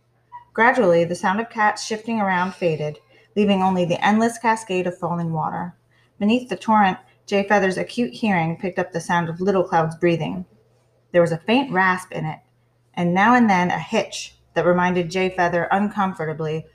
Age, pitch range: 30-49, 160-205 Hz